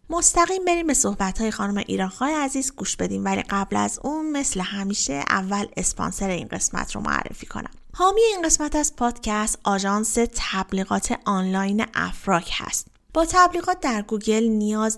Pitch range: 195-265 Hz